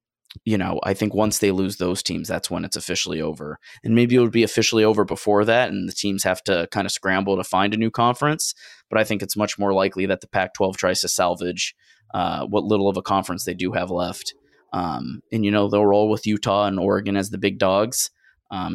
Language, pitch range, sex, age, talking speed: English, 90-105 Hz, male, 20-39, 240 wpm